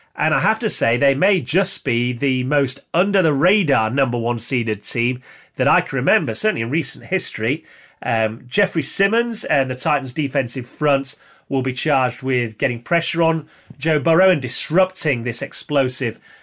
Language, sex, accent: English, male, British